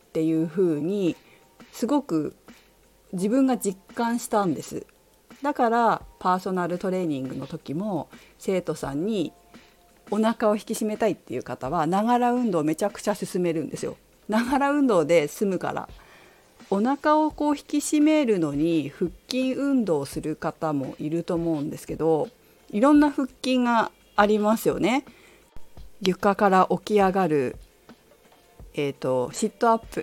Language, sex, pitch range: Japanese, female, 155-235 Hz